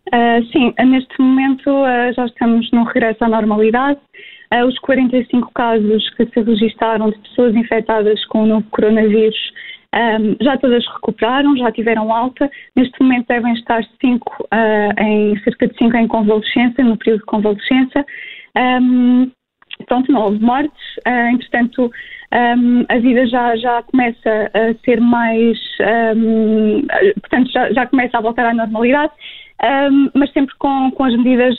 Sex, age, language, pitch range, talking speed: female, 20-39, Portuguese, 225-260 Hz, 150 wpm